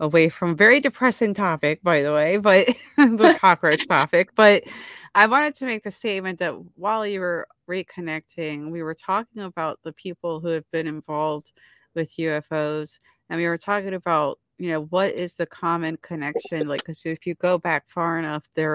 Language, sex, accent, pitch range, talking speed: English, female, American, 150-175 Hz, 185 wpm